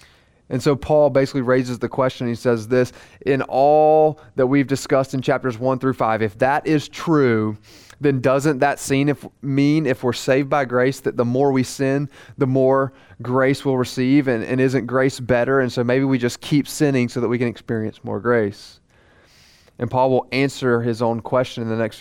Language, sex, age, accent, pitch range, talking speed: English, male, 30-49, American, 120-135 Hz, 200 wpm